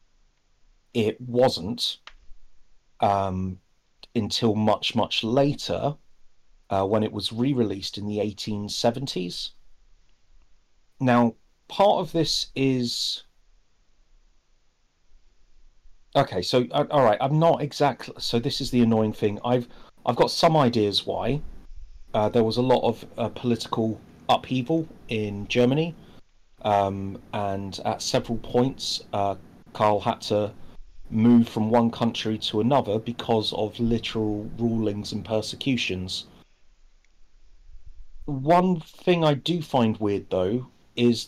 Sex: male